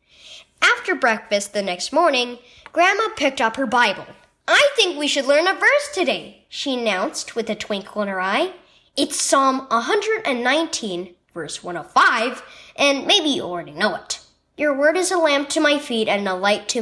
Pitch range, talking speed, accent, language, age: 205-325 Hz, 175 wpm, American, English, 10-29